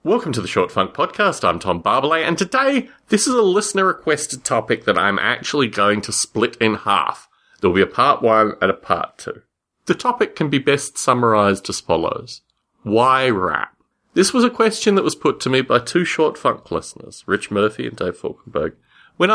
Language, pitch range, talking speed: English, 110-180 Hz, 195 wpm